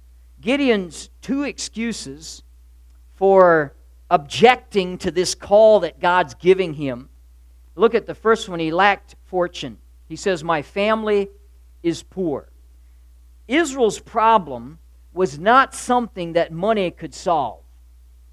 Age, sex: 50-69, male